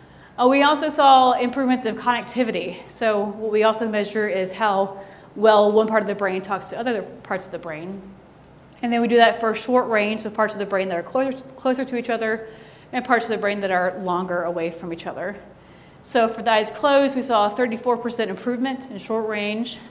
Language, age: English, 30-49